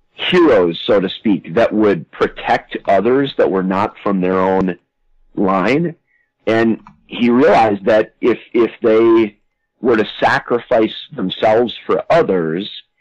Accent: American